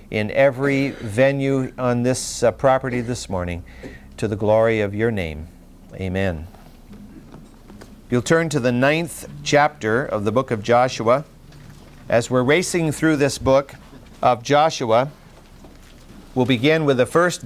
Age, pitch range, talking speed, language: 50-69, 115-150 Hz, 140 wpm, English